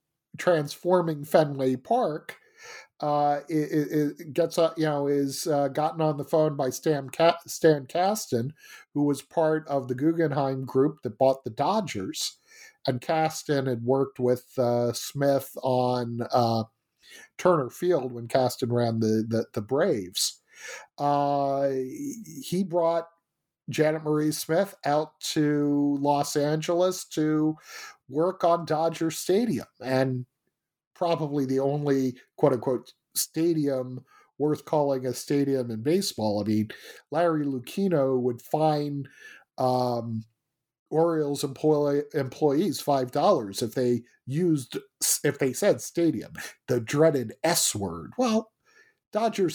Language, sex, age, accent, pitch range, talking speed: English, male, 50-69, American, 135-170 Hz, 120 wpm